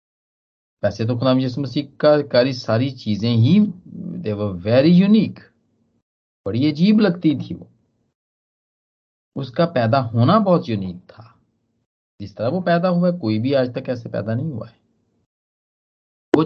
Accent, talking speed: native, 140 wpm